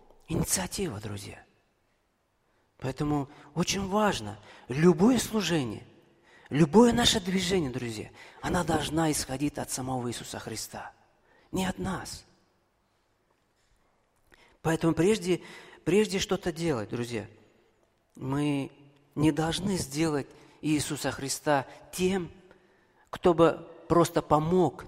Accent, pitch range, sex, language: native, 115-165 Hz, male, Russian